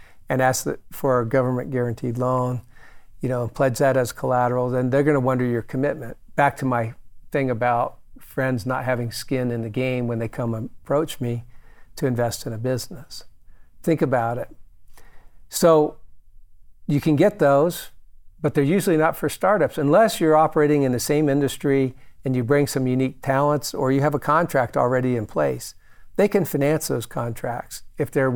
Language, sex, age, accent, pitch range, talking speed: English, male, 50-69, American, 120-145 Hz, 180 wpm